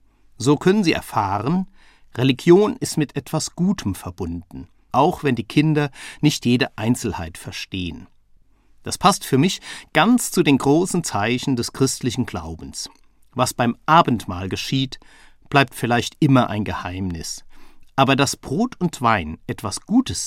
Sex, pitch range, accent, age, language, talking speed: male, 100-145 Hz, German, 50-69, German, 135 wpm